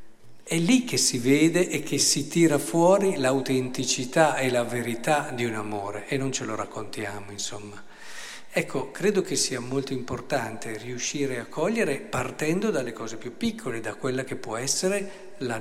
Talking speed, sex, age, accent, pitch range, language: 165 wpm, male, 50-69, native, 125-170 Hz, Italian